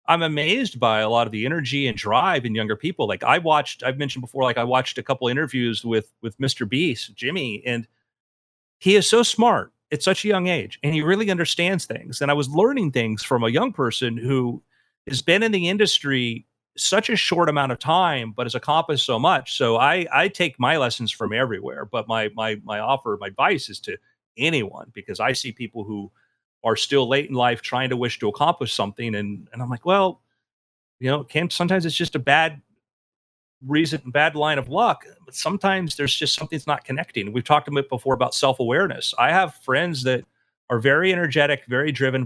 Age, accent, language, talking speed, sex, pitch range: 40-59, American, English, 210 wpm, male, 115-155 Hz